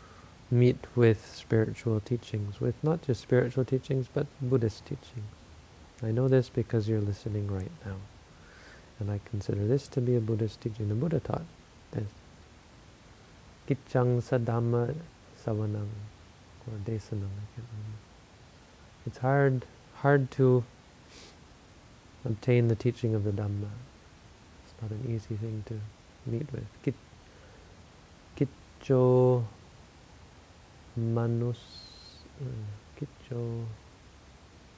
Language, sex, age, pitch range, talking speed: English, male, 40-59, 105-120 Hz, 105 wpm